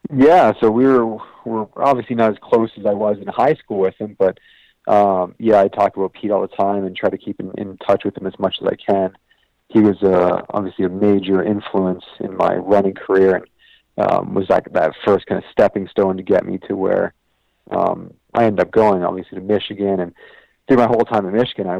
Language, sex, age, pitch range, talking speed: English, male, 40-59, 95-105 Hz, 230 wpm